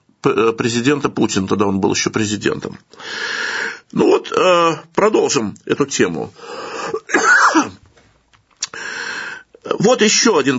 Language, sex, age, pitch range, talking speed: Russian, male, 50-69, 145-195 Hz, 85 wpm